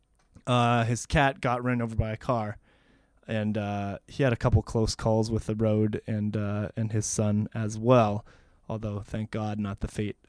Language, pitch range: English, 105-130 Hz